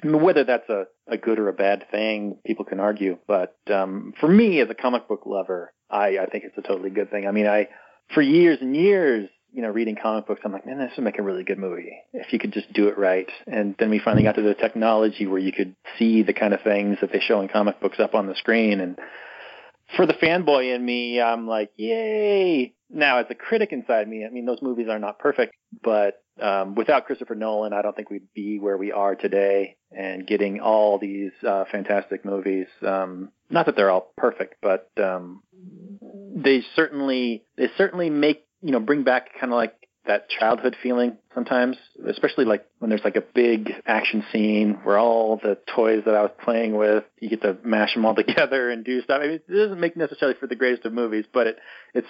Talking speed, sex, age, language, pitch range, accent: 220 wpm, male, 30-49, English, 100-125 Hz, American